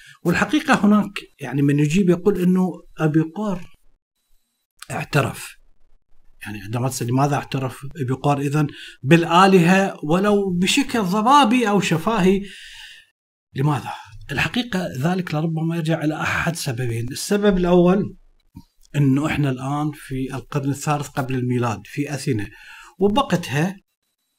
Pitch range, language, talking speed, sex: 130-180 Hz, Arabic, 105 wpm, male